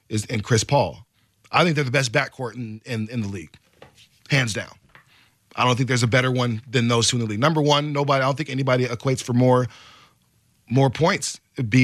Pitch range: 110-130 Hz